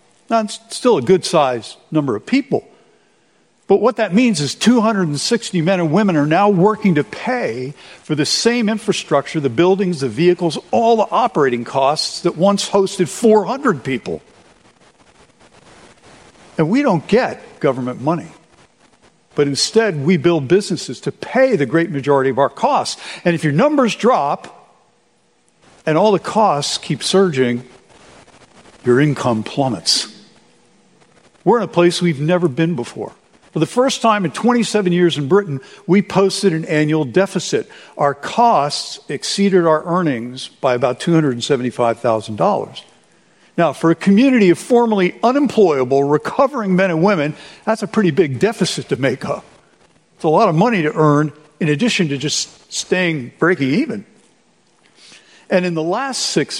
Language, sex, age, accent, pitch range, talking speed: English, male, 60-79, American, 145-210 Hz, 150 wpm